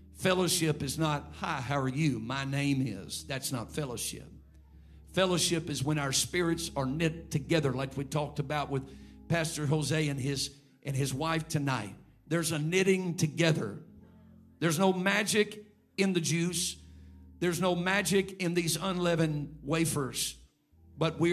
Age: 50-69